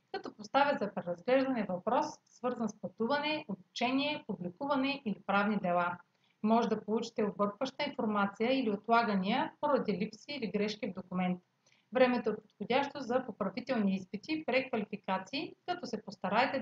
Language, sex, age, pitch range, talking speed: Bulgarian, female, 30-49, 195-255 Hz, 135 wpm